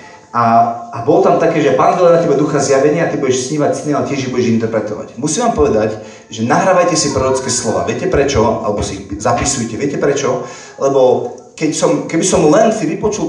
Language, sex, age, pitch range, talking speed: Slovak, male, 40-59, 110-145 Hz, 195 wpm